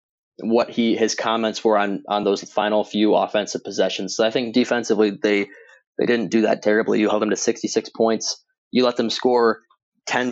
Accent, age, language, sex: American, 20-39, English, male